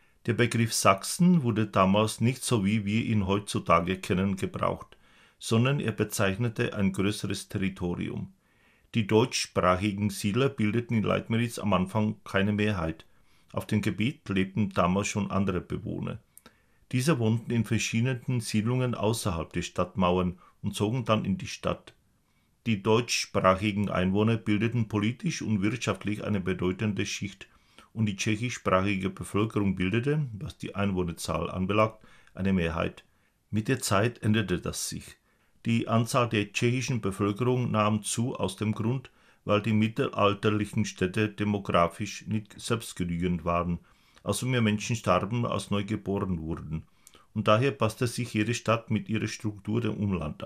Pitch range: 95-115 Hz